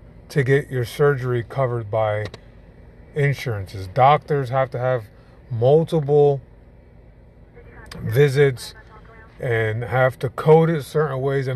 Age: 30-49